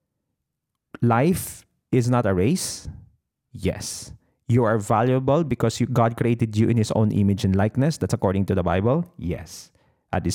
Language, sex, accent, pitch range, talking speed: Filipino, male, native, 105-140 Hz, 160 wpm